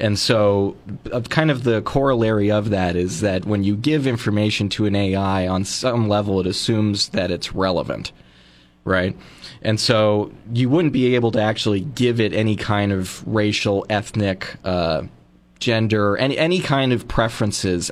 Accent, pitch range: American, 95-115 Hz